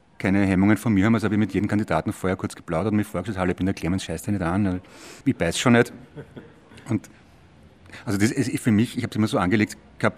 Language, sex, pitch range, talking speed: German, male, 100-120 Hz, 255 wpm